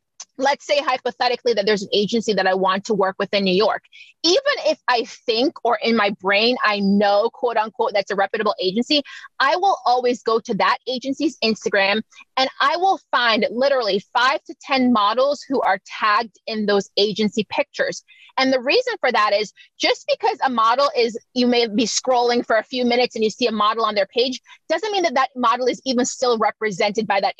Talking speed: 205 wpm